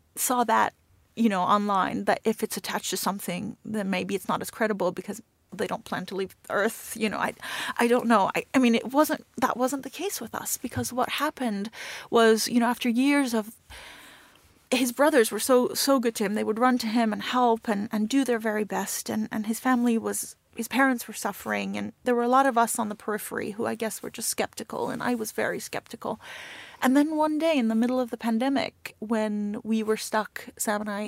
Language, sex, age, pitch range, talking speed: English, female, 30-49, 210-245 Hz, 230 wpm